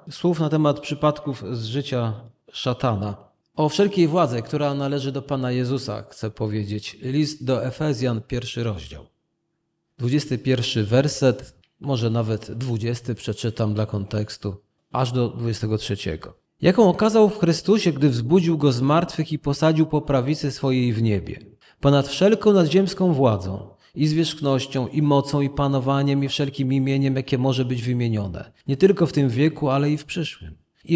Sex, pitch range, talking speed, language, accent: male, 120-160 Hz, 150 wpm, Polish, native